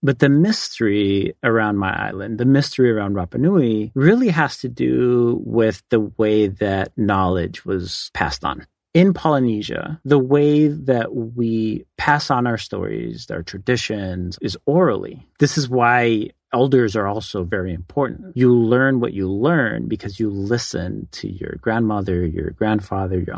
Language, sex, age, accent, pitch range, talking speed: English, male, 40-59, American, 100-130 Hz, 150 wpm